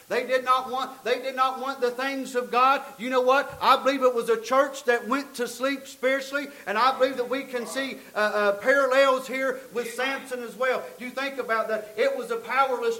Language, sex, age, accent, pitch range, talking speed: English, male, 40-59, American, 245-275 Hz, 230 wpm